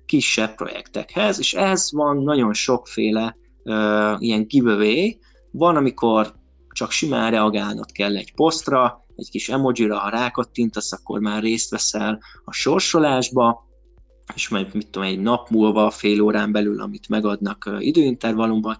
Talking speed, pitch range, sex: 135 wpm, 105-115 Hz, male